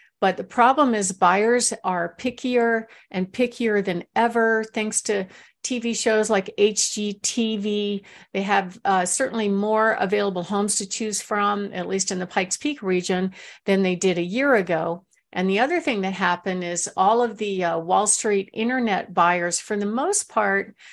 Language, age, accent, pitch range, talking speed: English, 50-69, American, 185-225 Hz, 170 wpm